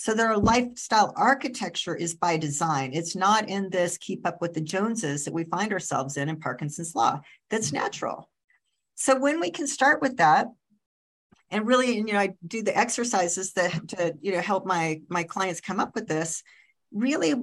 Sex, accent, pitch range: female, American, 175-240 Hz